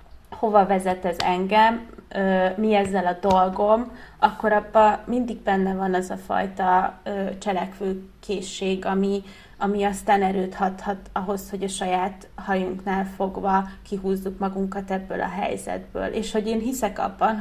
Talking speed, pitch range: 130 wpm, 190-205 Hz